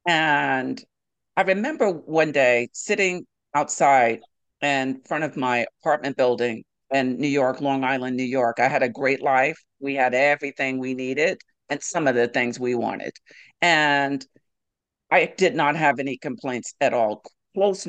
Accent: American